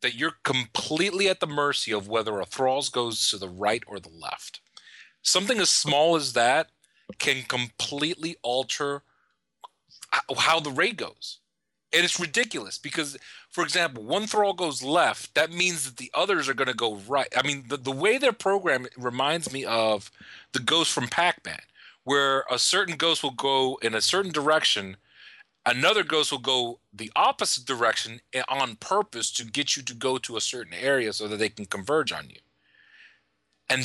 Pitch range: 120-165 Hz